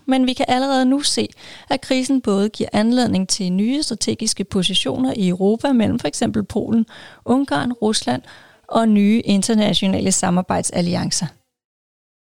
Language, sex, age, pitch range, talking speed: Danish, female, 30-49, 195-235 Hz, 125 wpm